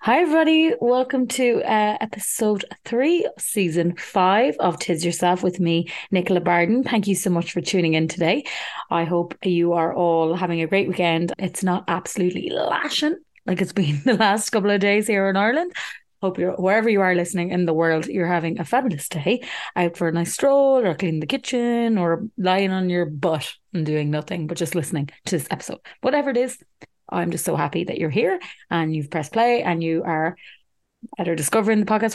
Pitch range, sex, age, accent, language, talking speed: 165-215 Hz, female, 30-49, Irish, English, 195 wpm